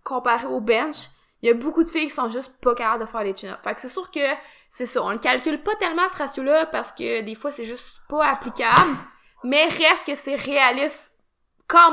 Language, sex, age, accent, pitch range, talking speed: French, female, 20-39, Canadian, 235-295 Hz, 225 wpm